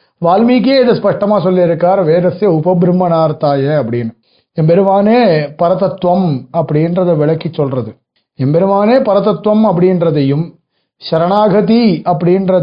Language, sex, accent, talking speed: Tamil, male, native, 80 wpm